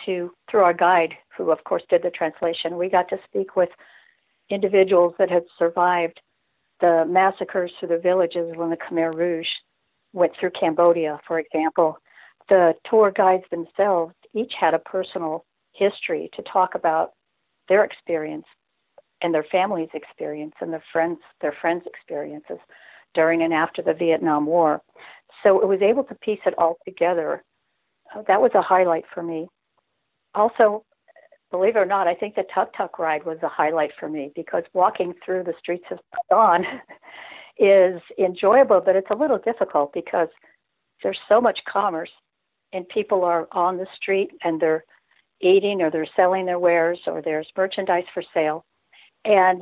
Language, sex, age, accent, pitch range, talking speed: English, female, 60-79, American, 165-195 Hz, 160 wpm